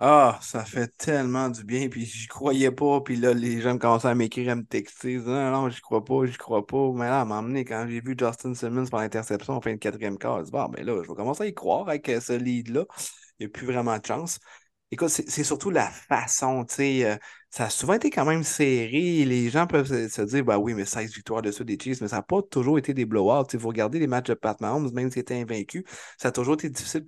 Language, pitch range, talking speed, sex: French, 110-135 Hz, 260 wpm, male